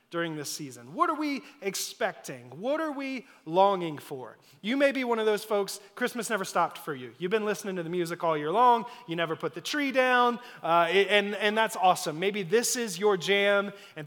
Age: 30-49